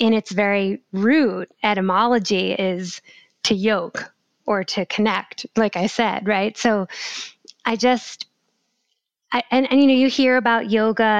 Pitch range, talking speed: 190-230 Hz, 145 wpm